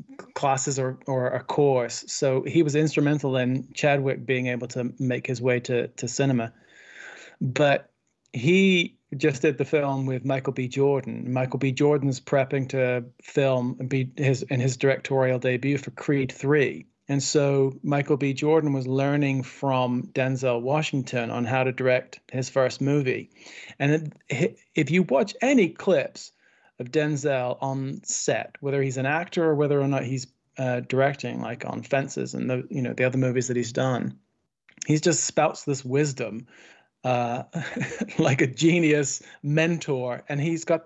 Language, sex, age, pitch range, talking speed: English, male, 40-59, 125-145 Hz, 155 wpm